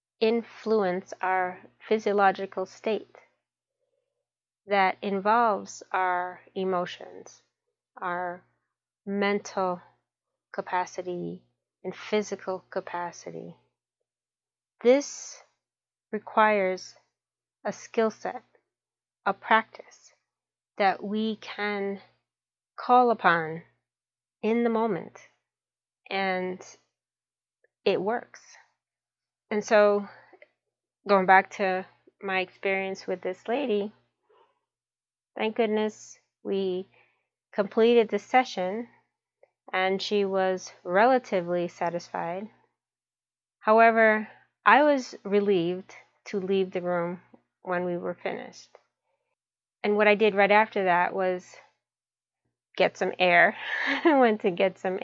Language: English